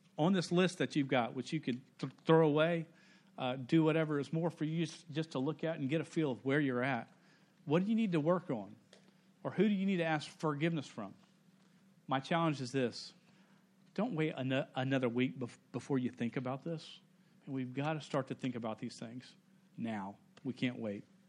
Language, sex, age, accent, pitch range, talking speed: English, male, 40-59, American, 130-165 Hz, 215 wpm